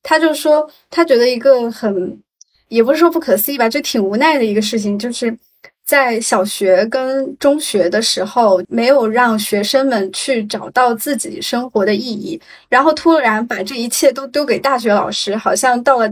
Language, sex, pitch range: Chinese, female, 215-270 Hz